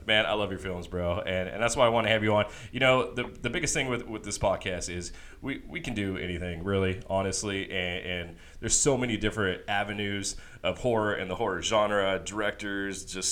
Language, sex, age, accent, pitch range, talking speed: English, male, 30-49, American, 90-110 Hz, 220 wpm